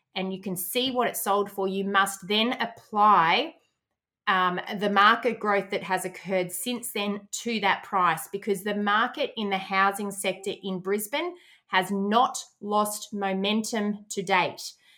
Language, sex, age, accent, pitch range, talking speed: English, female, 20-39, Australian, 185-210 Hz, 155 wpm